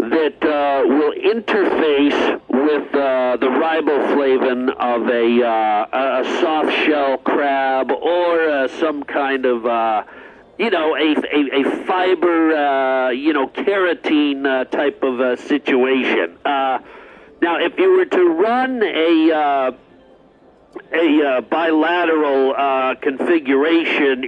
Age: 50-69